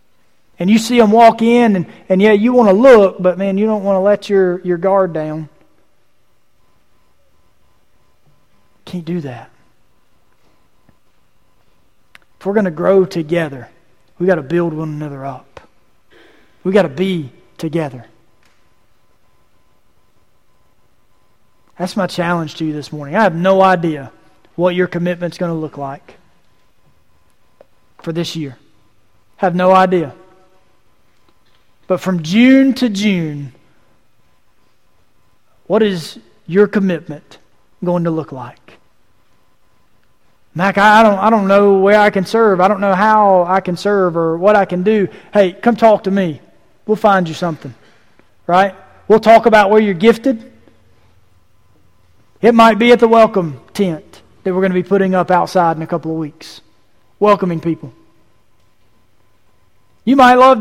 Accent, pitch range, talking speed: American, 140-200 Hz, 145 wpm